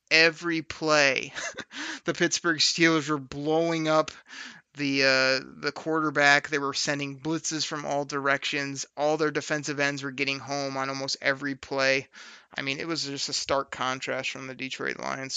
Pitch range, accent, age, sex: 135-160 Hz, American, 20-39, male